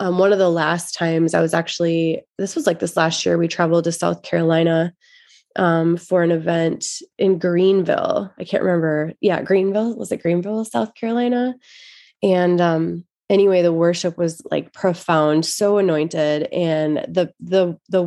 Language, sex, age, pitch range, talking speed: English, female, 20-39, 160-190 Hz, 165 wpm